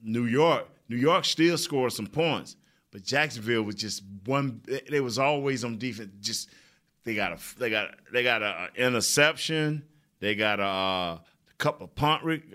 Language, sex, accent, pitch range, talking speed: English, male, American, 105-140 Hz, 180 wpm